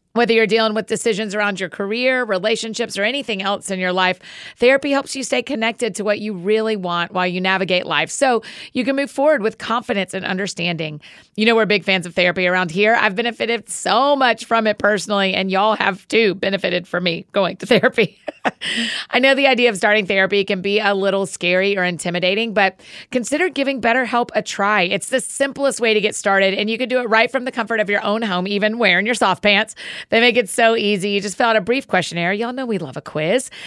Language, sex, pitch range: English, female, 190-240 Hz